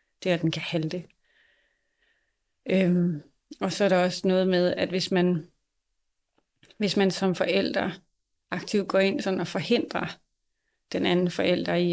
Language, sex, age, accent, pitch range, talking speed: Danish, female, 30-49, native, 170-190 Hz, 150 wpm